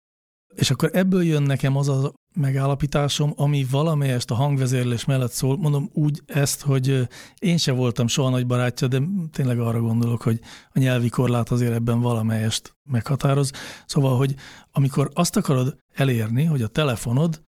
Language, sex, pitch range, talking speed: Hungarian, male, 120-140 Hz, 155 wpm